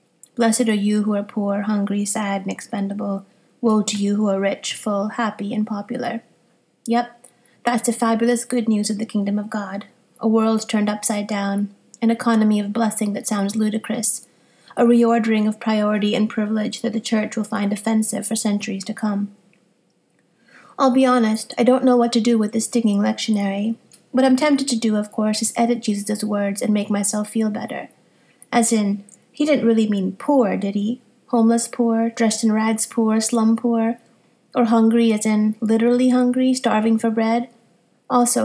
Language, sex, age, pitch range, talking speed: English, female, 30-49, 210-235 Hz, 180 wpm